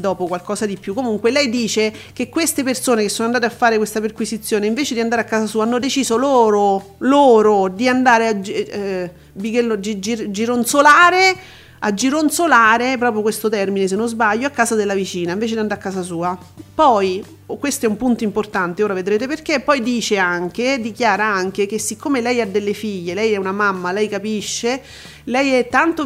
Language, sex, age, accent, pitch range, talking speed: Italian, female, 40-59, native, 190-235 Hz, 180 wpm